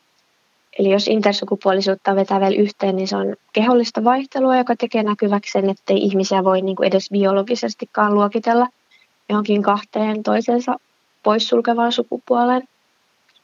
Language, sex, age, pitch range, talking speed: Finnish, female, 20-39, 195-235 Hz, 125 wpm